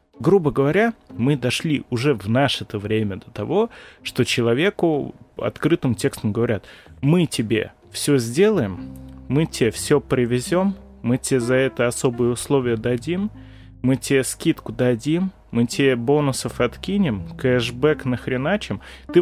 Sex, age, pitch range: male, 20-39, 115-150 Hz